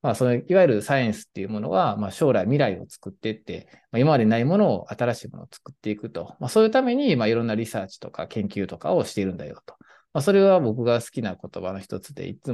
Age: 20-39